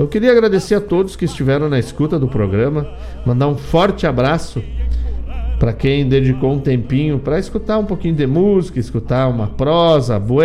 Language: Portuguese